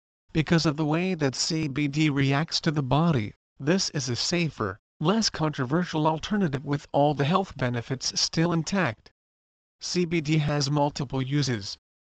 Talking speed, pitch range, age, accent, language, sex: 140 wpm, 135-170 Hz, 40-59, American, English, male